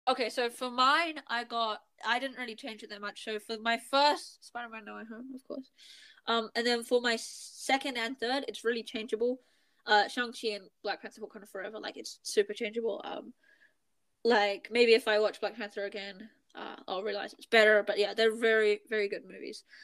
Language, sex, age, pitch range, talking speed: English, female, 10-29, 210-250 Hz, 210 wpm